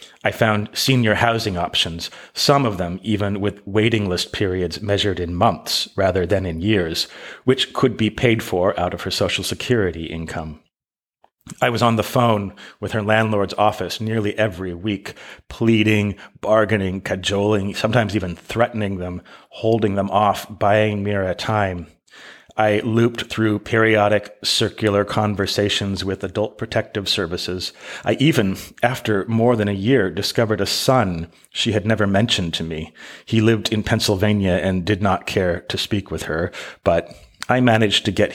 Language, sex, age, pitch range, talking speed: English, male, 30-49, 90-110 Hz, 155 wpm